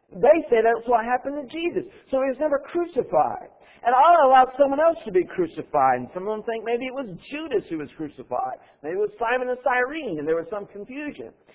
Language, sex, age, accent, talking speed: English, male, 50-69, American, 225 wpm